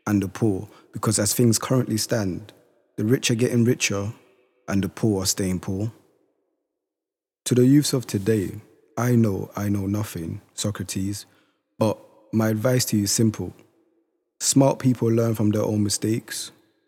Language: English